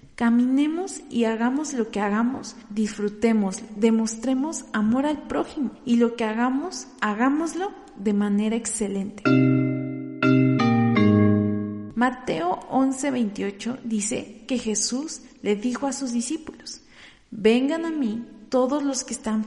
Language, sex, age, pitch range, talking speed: Spanish, female, 40-59, 215-265 Hz, 110 wpm